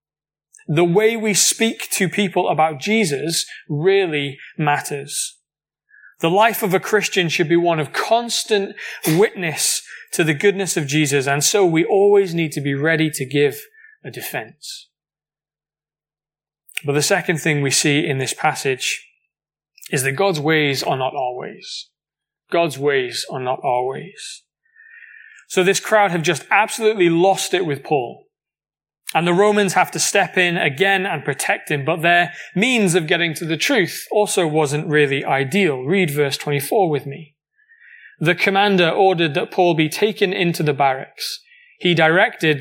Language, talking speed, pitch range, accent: English, 155 wpm, 150-200 Hz, British